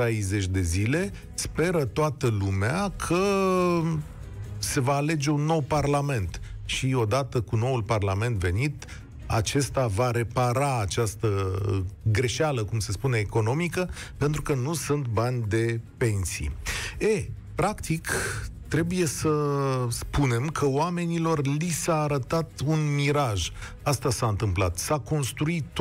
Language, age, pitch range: Romanian, 40-59, 115-160 Hz